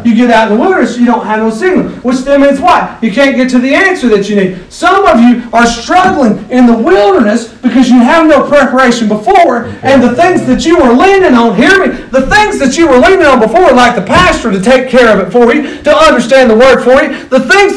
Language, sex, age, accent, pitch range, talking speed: English, male, 40-59, American, 175-260 Hz, 250 wpm